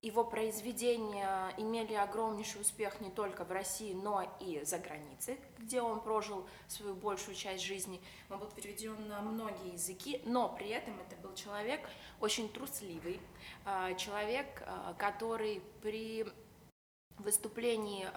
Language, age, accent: Russian, 20-39, native